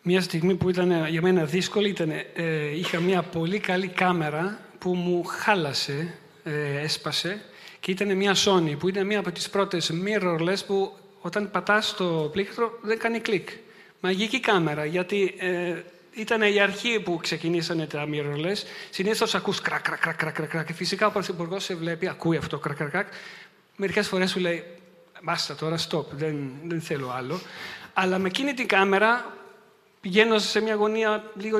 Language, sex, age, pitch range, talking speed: Greek, male, 40-59, 165-220 Hz, 165 wpm